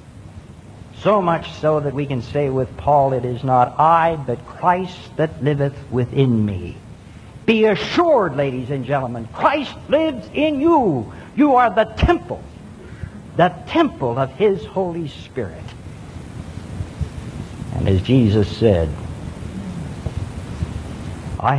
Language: English